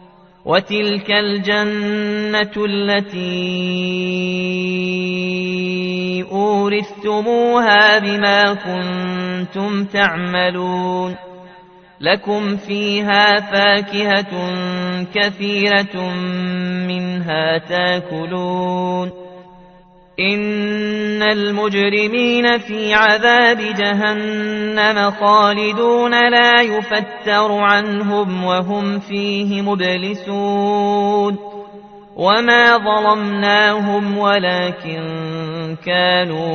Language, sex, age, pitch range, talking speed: Arabic, male, 30-49, 180-205 Hz, 50 wpm